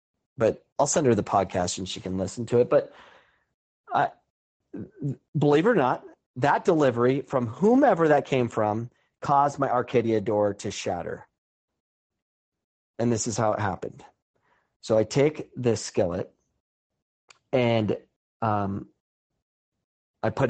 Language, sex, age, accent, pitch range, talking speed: English, male, 40-59, American, 105-125 Hz, 135 wpm